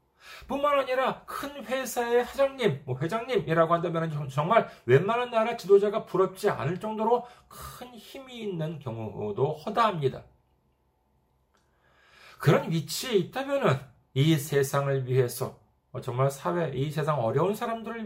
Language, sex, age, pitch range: Korean, male, 40-59, 135-220 Hz